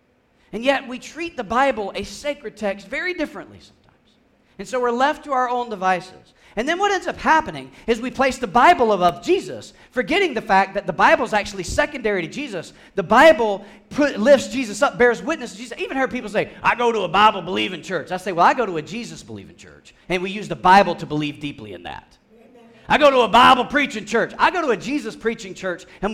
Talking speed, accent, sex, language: 220 wpm, American, male, English